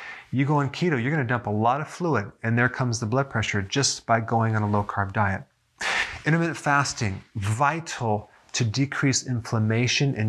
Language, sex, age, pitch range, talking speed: English, male, 30-49, 110-130 Hz, 185 wpm